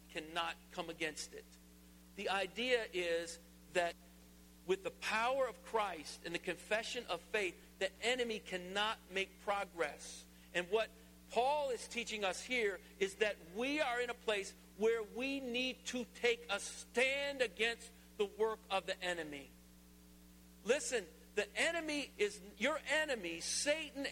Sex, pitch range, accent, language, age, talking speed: male, 180-260 Hz, American, English, 50-69, 140 wpm